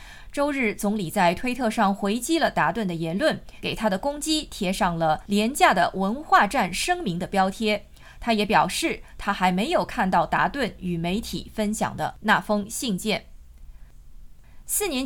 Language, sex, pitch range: Chinese, female, 185-255 Hz